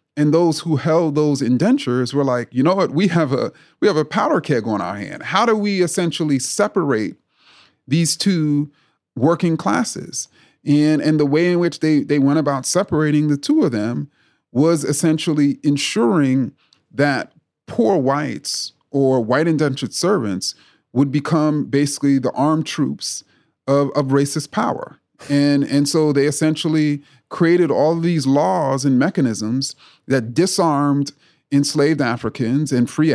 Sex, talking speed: male, 150 wpm